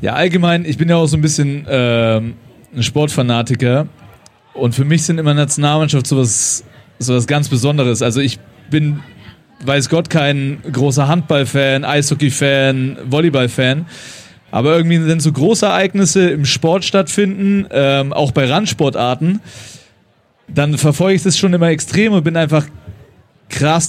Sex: male